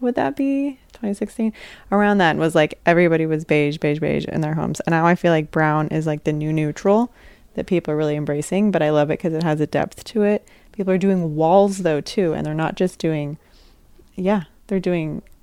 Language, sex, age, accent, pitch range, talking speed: English, female, 20-39, American, 155-185 Hz, 220 wpm